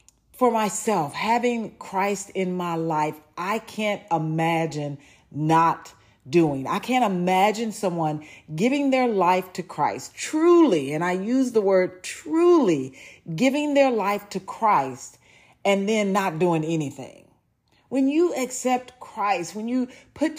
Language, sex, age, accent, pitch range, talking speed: English, female, 40-59, American, 160-245 Hz, 130 wpm